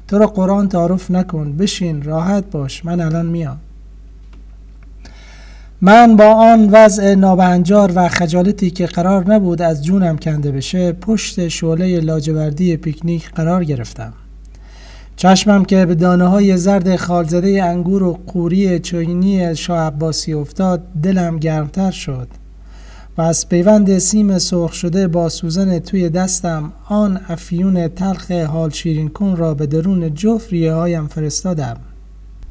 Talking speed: 125 wpm